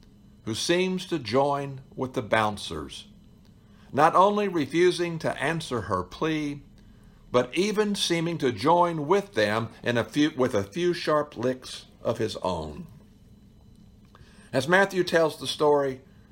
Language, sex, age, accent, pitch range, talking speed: English, male, 60-79, American, 105-165 Hz, 135 wpm